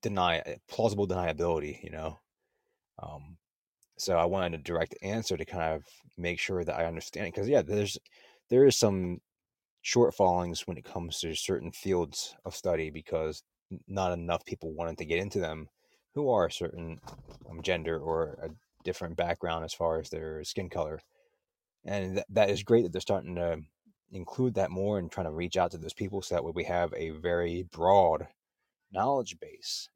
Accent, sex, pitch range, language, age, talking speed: American, male, 80-95 Hz, English, 30-49, 180 wpm